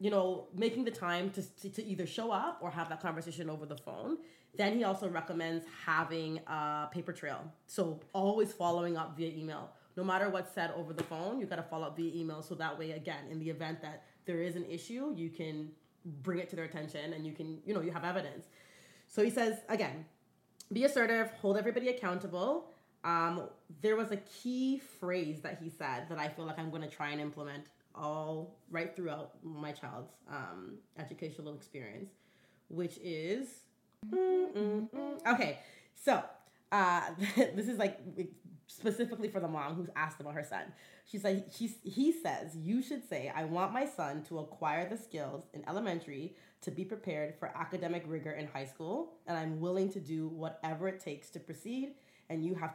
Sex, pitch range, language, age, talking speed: female, 160-200 Hz, English, 20-39, 190 wpm